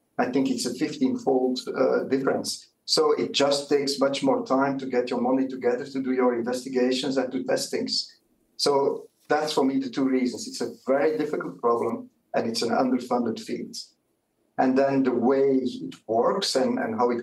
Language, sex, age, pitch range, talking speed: English, male, 50-69, 120-135 Hz, 190 wpm